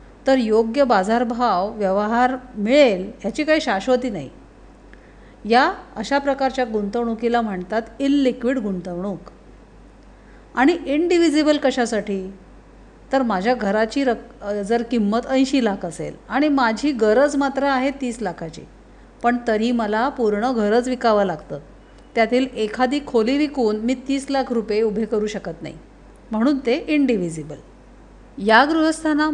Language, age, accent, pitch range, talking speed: Marathi, 50-69, native, 210-265 Hz, 120 wpm